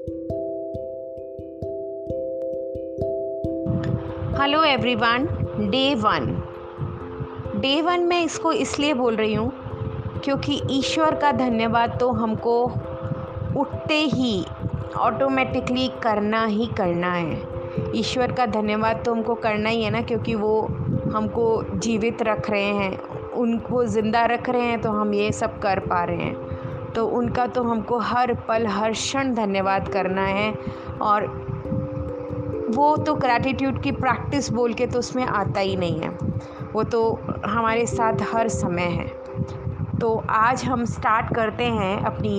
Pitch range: 185-255 Hz